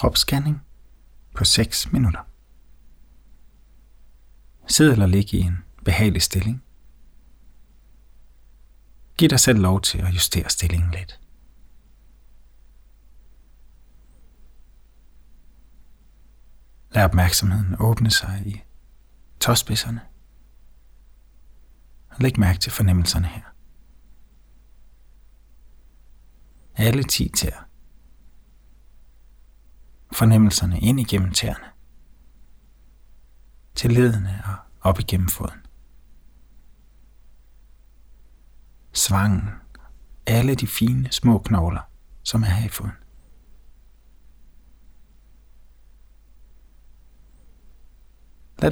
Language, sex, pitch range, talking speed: Danish, male, 80-110 Hz, 70 wpm